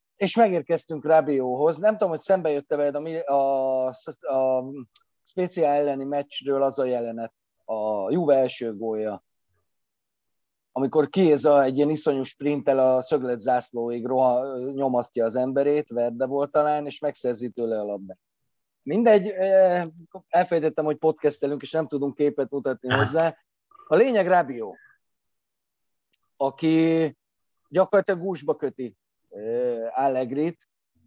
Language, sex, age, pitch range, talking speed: Hungarian, male, 30-49, 125-165 Hz, 120 wpm